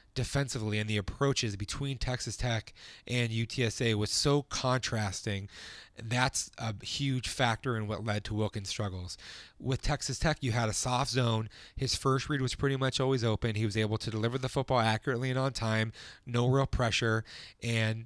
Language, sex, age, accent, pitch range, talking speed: English, male, 30-49, American, 110-130 Hz, 175 wpm